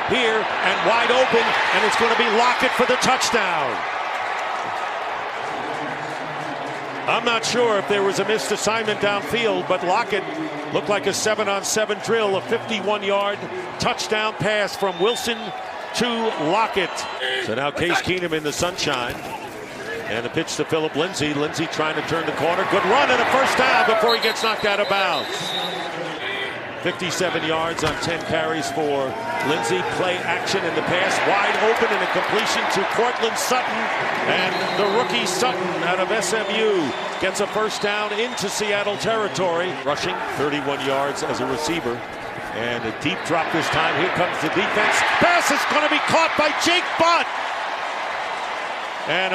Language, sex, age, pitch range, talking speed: English, male, 50-69, 165-220 Hz, 155 wpm